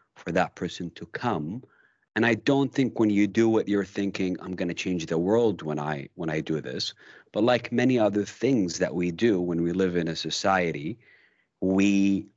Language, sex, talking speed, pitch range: English, male, 205 wpm, 90-110 Hz